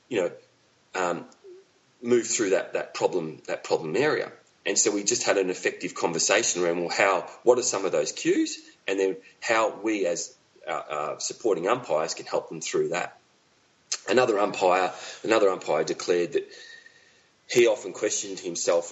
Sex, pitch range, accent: male, 280-450 Hz, Australian